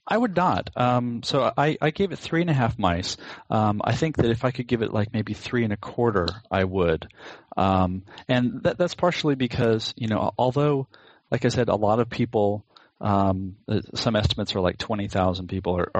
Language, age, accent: English, 40-59, American